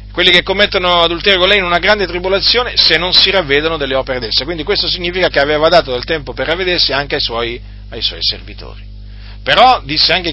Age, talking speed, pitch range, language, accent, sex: 40-59, 210 wpm, 100-150 Hz, Italian, native, male